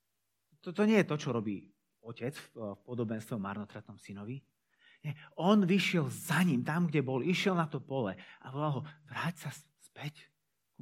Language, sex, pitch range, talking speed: Slovak, male, 105-150 Hz, 165 wpm